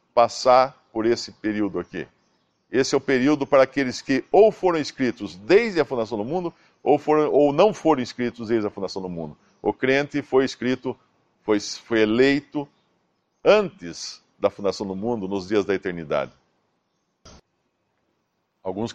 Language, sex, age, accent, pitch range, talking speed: Portuguese, male, 60-79, Brazilian, 110-135 Hz, 150 wpm